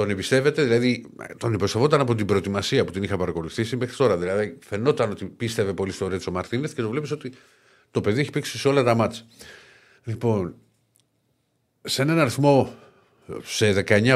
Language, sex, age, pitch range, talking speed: Greek, male, 50-69, 100-130 Hz, 170 wpm